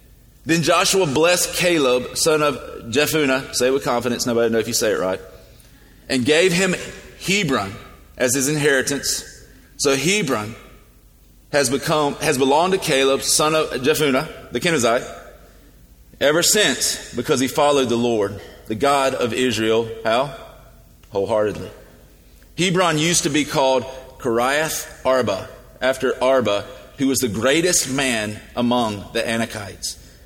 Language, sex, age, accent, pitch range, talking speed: English, male, 30-49, American, 125-160 Hz, 135 wpm